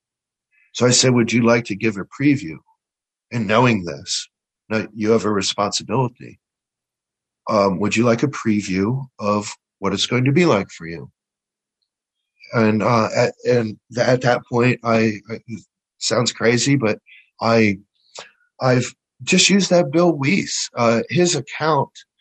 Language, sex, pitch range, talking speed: English, male, 110-145 Hz, 155 wpm